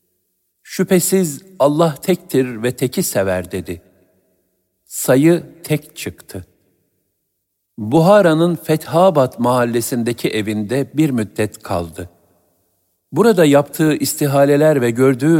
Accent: native